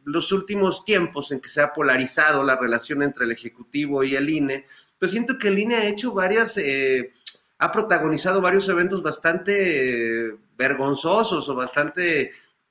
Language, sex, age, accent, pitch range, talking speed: Spanish, male, 40-59, Mexican, 125-170 Hz, 160 wpm